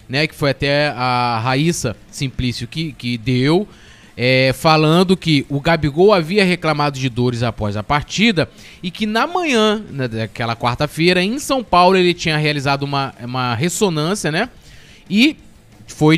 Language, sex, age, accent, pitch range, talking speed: Portuguese, male, 20-39, Brazilian, 140-215 Hz, 145 wpm